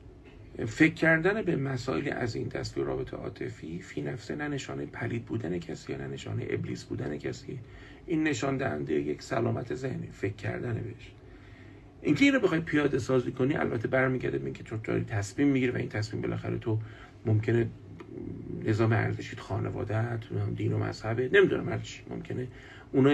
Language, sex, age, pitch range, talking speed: Persian, male, 50-69, 110-145 Hz, 170 wpm